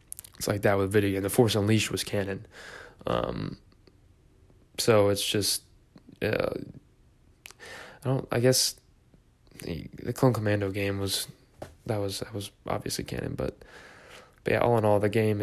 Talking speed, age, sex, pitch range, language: 155 wpm, 20-39, male, 100-115 Hz, English